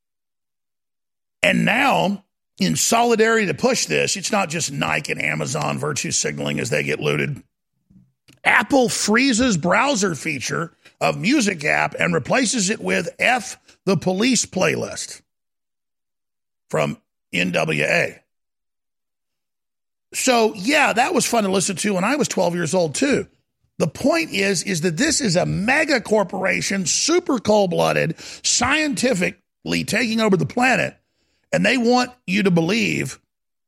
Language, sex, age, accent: English, male, 50-69, American